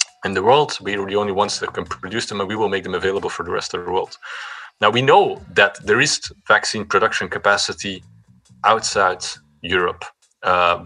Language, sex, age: English, male, 30-49